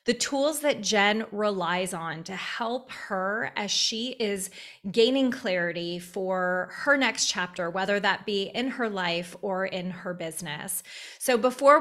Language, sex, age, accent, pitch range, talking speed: English, female, 30-49, American, 185-235 Hz, 150 wpm